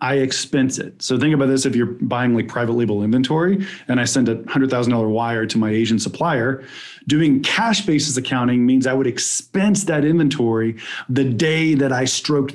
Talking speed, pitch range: 185 wpm, 125-155 Hz